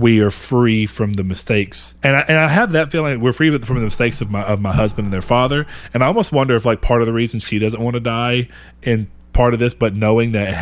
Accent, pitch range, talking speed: American, 95-120 Hz, 275 wpm